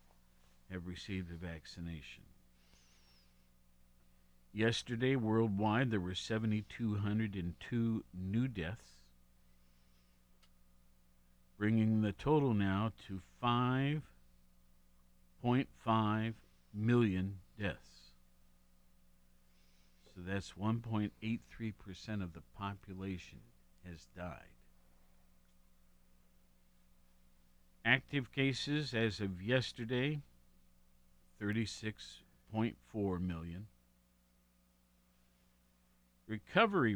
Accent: American